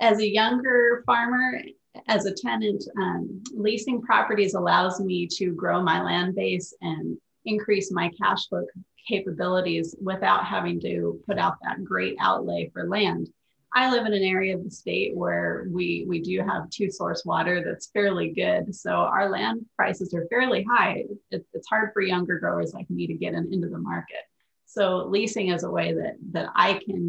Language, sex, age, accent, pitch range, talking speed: English, female, 30-49, American, 175-210 Hz, 180 wpm